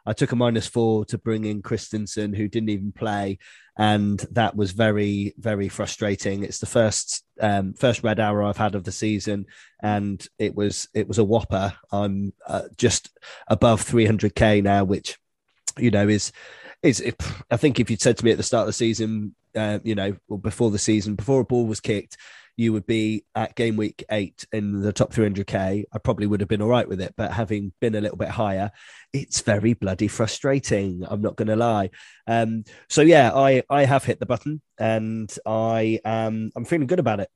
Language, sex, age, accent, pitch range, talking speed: English, male, 20-39, British, 105-115 Hz, 210 wpm